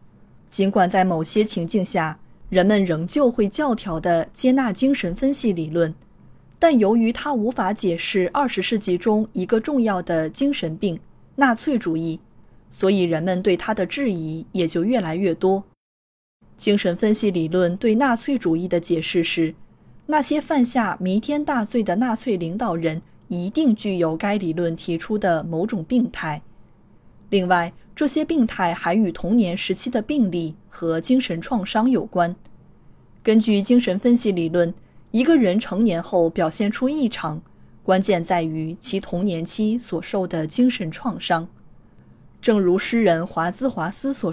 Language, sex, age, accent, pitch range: Chinese, female, 20-39, native, 170-235 Hz